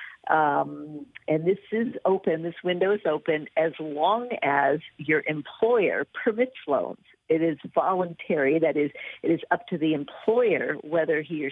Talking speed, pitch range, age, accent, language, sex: 155 wpm, 145-180 Hz, 50-69, American, English, female